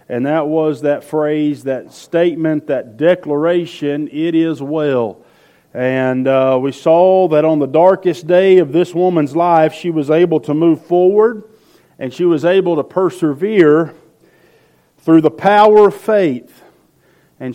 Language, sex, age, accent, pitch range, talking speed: English, male, 40-59, American, 145-175 Hz, 145 wpm